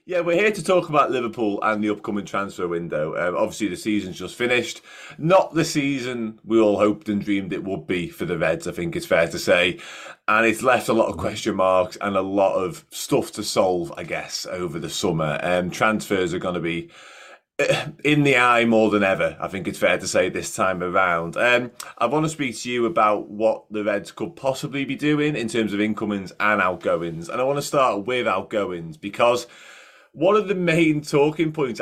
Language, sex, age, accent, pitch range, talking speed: English, male, 30-49, British, 100-135 Hz, 215 wpm